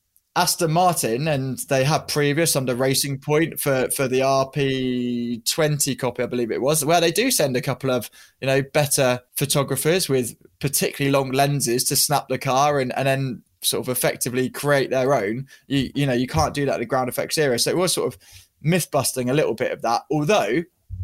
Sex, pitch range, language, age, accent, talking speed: male, 130-150 Hz, English, 20-39, British, 200 wpm